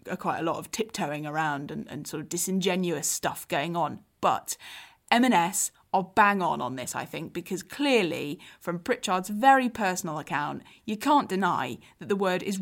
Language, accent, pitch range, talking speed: English, British, 170-240 Hz, 180 wpm